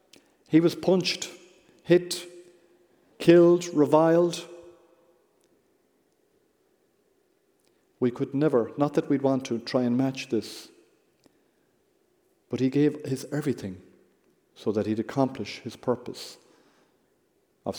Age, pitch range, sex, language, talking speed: 50-69, 110-150 Hz, male, English, 100 wpm